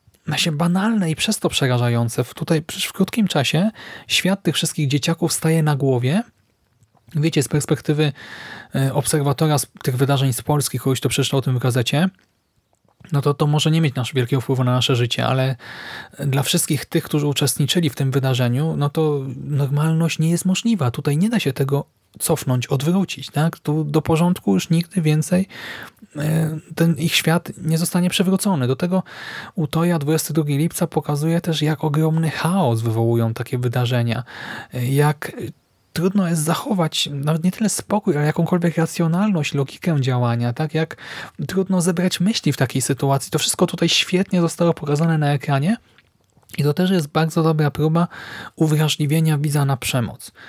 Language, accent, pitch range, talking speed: Polish, native, 135-170 Hz, 155 wpm